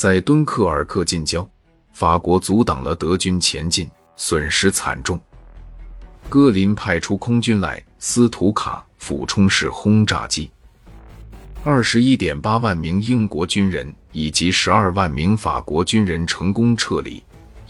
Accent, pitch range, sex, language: native, 85-110 Hz, male, Chinese